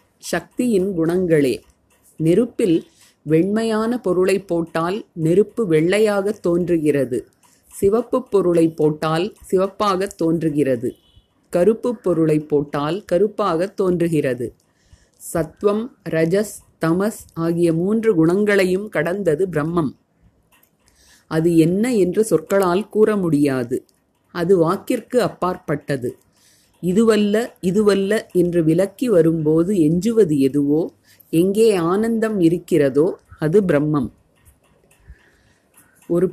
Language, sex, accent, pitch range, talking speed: Tamil, female, native, 160-205 Hz, 80 wpm